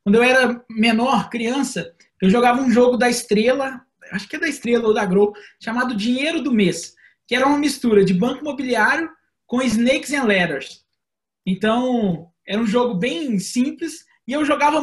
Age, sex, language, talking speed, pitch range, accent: 20-39, male, Portuguese, 175 wpm, 205-280 Hz, Brazilian